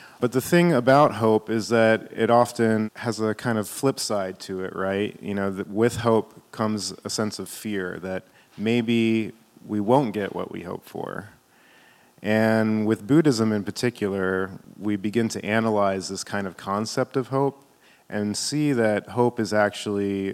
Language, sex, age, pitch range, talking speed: English, male, 30-49, 100-115 Hz, 170 wpm